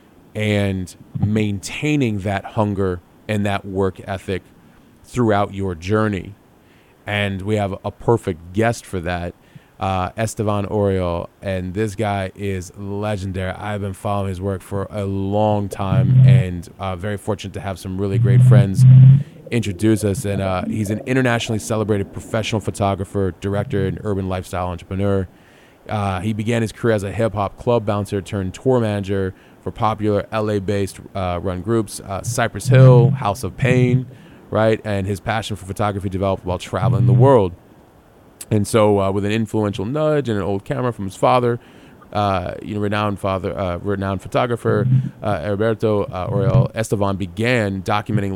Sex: male